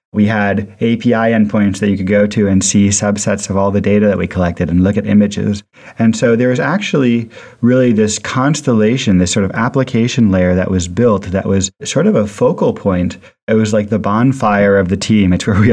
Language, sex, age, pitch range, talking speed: English, male, 30-49, 95-110 Hz, 220 wpm